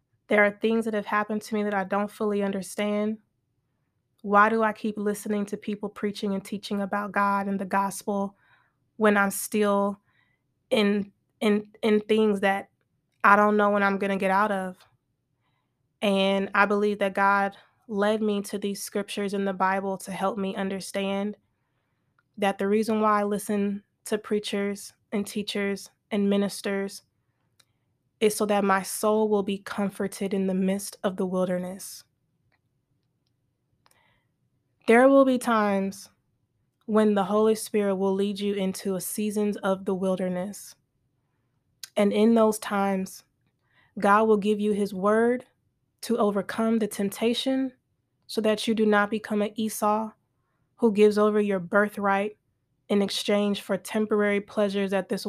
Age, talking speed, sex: 20-39, 150 wpm, female